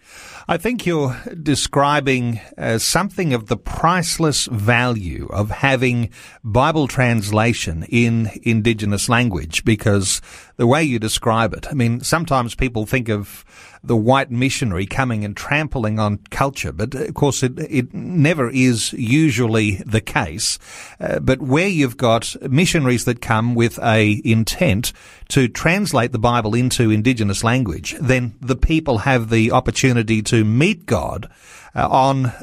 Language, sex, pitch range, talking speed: English, male, 115-140 Hz, 140 wpm